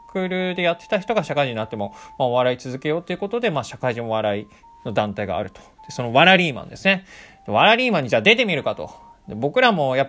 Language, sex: Japanese, male